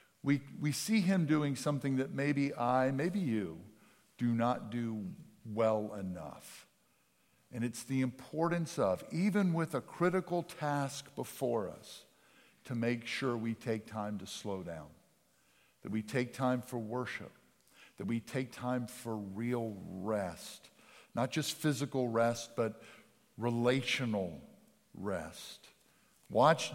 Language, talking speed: English, 130 wpm